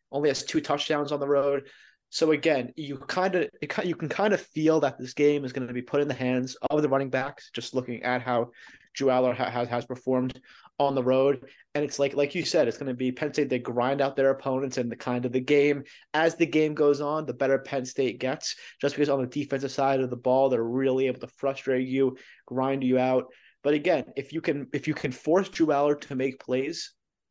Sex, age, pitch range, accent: male, 20-39, 130-145 Hz, American